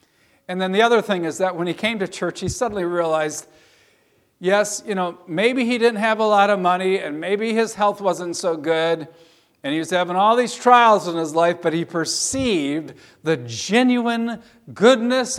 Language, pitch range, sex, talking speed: English, 130-195 Hz, male, 190 wpm